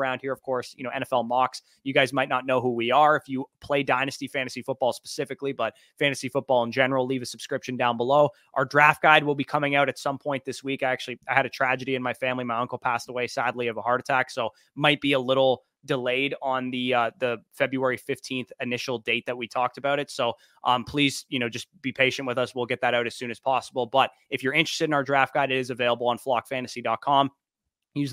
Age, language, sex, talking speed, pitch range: 20-39, English, male, 245 wpm, 120-135 Hz